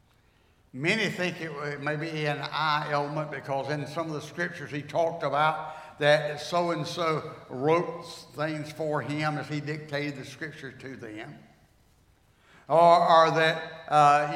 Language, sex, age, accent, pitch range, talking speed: English, male, 60-79, American, 150-210 Hz, 140 wpm